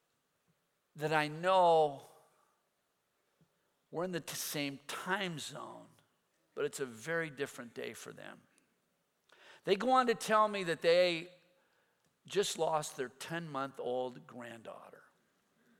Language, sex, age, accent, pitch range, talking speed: English, male, 50-69, American, 150-235 Hz, 115 wpm